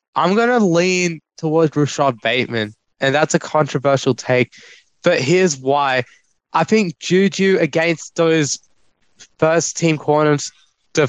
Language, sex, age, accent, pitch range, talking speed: English, male, 20-39, Australian, 130-160 Hz, 130 wpm